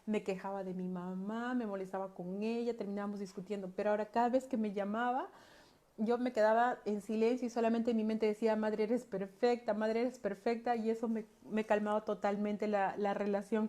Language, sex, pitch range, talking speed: Spanish, female, 205-235 Hz, 190 wpm